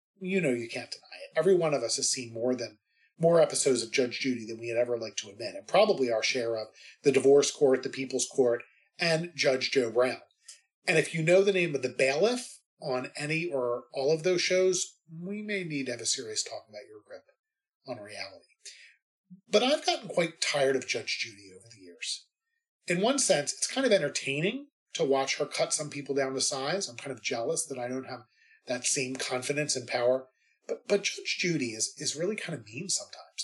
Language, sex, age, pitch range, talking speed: English, male, 40-59, 125-195 Hz, 215 wpm